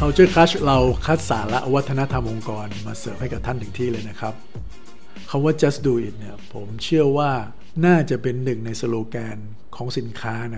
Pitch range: 110-135 Hz